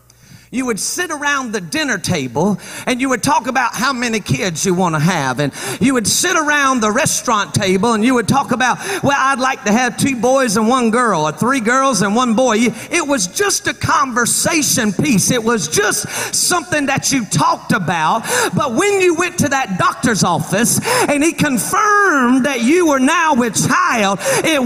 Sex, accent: male, American